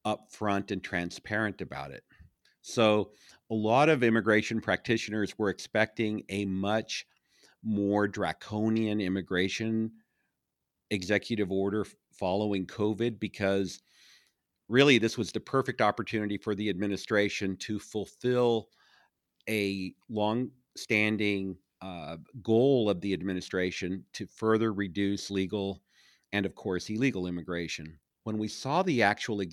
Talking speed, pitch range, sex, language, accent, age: 110 wpm, 95-110 Hz, male, English, American, 50-69